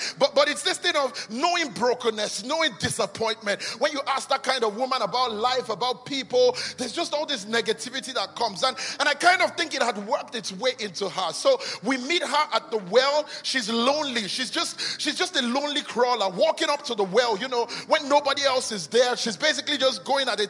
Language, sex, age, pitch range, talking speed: English, male, 30-49, 230-300 Hz, 220 wpm